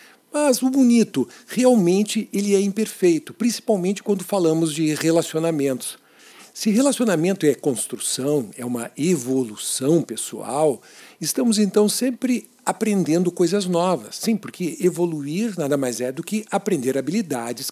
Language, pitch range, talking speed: Portuguese, 145-210 Hz, 120 wpm